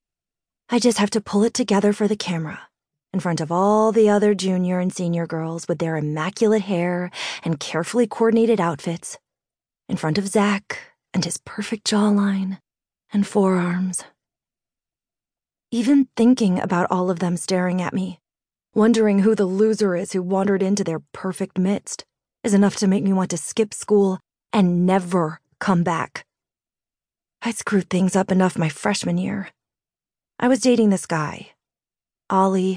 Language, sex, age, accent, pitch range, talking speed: English, female, 20-39, American, 180-210 Hz, 155 wpm